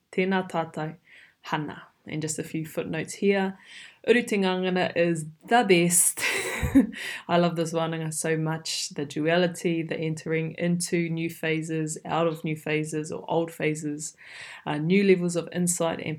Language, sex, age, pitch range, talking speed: English, female, 20-39, 160-180 Hz, 145 wpm